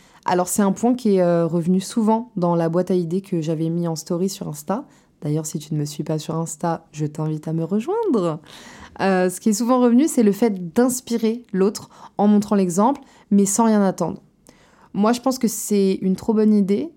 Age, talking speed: 20-39, 215 wpm